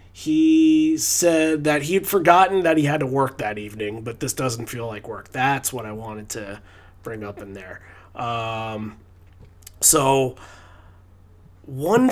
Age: 30-49